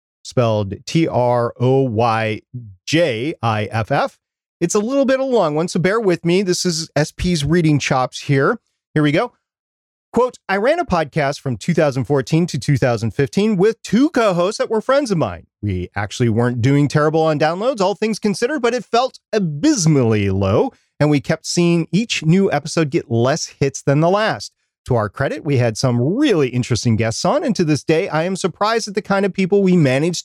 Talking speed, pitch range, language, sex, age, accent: 185 wpm, 130-195 Hz, English, male, 40-59, American